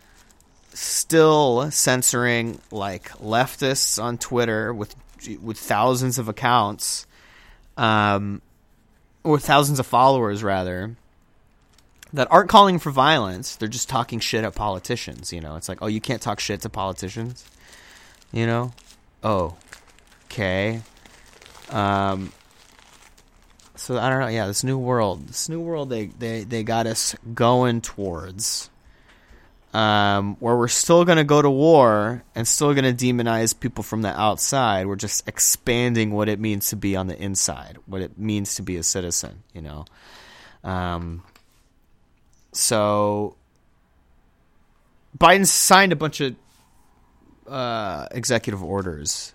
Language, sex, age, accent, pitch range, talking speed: English, male, 30-49, American, 95-130 Hz, 135 wpm